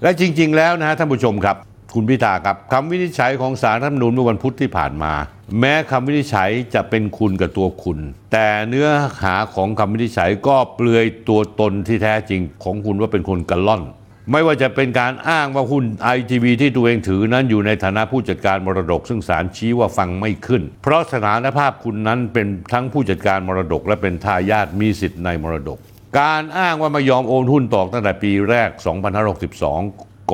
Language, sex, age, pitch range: Thai, male, 60-79, 95-130 Hz